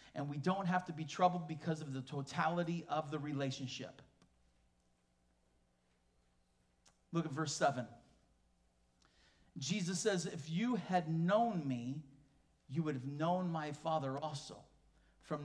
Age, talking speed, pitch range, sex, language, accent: 40-59, 130 wpm, 150-235 Hz, male, English, American